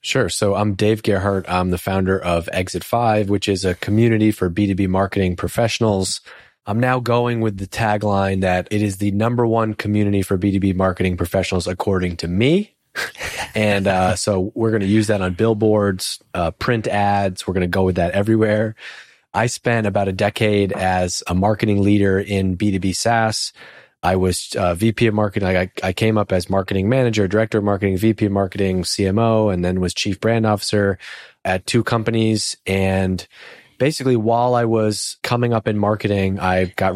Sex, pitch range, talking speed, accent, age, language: male, 95-110 Hz, 180 wpm, American, 30-49, English